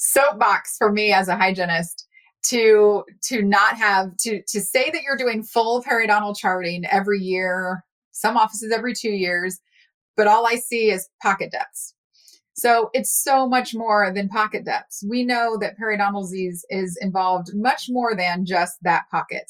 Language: English